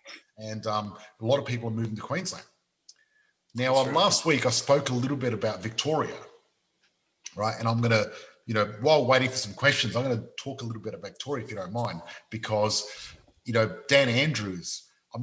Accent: Australian